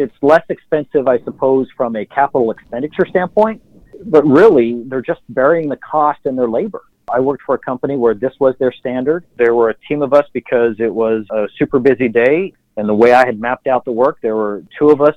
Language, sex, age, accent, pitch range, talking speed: English, male, 40-59, American, 120-145 Hz, 225 wpm